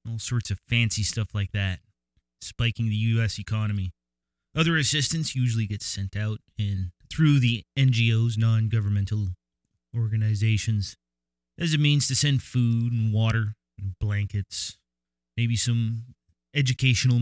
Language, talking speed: English, 125 wpm